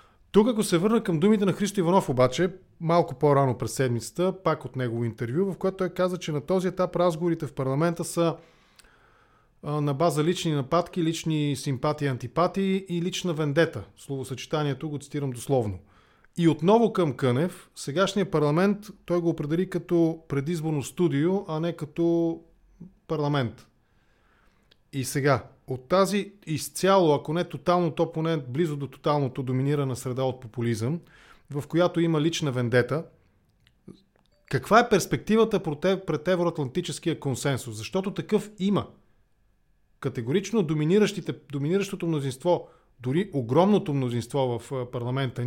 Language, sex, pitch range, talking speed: English, male, 135-180 Hz, 130 wpm